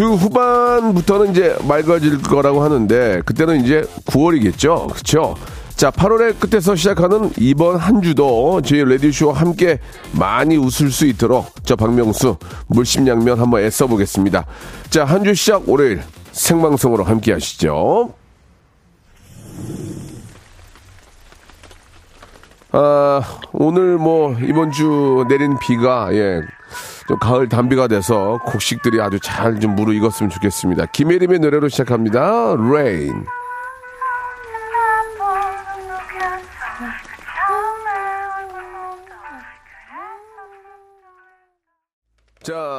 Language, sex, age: Korean, male, 40-59